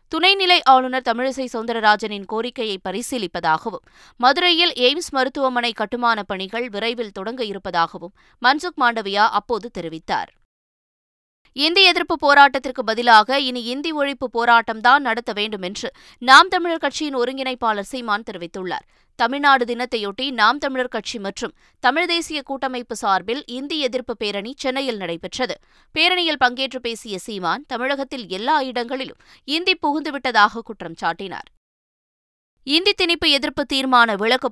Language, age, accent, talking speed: Tamil, 20-39, native, 115 wpm